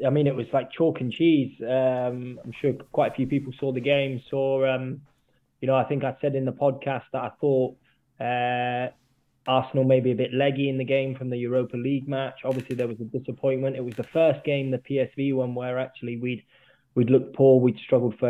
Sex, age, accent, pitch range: male, 20-39, British, 120-135 Hz